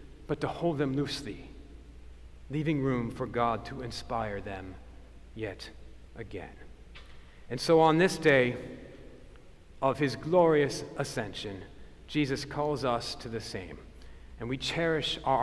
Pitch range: 105-150 Hz